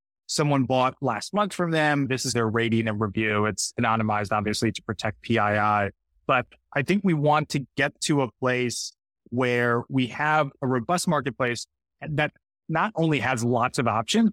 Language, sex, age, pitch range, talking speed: English, male, 30-49, 120-150 Hz, 170 wpm